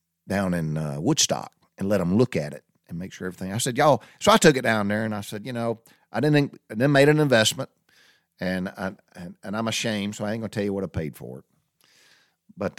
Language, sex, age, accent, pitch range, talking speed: English, male, 50-69, American, 95-115 Hz, 245 wpm